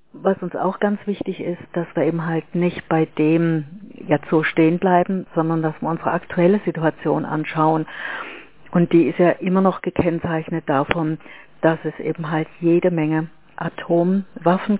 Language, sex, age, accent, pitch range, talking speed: German, female, 50-69, German, 160-190 Hz, 160 wpm